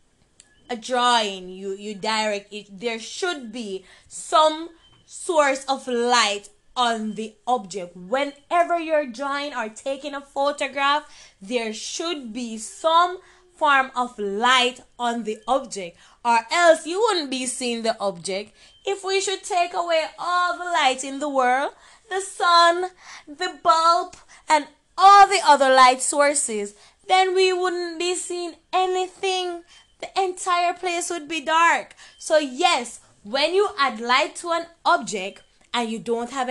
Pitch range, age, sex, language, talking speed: 225-345 Hz, 20-39, female, English, 140 wpm